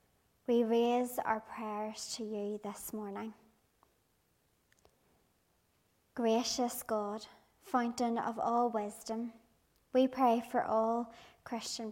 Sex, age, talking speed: male, 30-49, 95 wpm